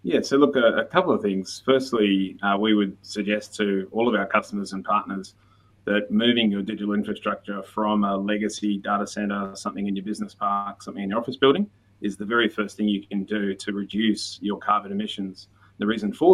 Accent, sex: Australian, male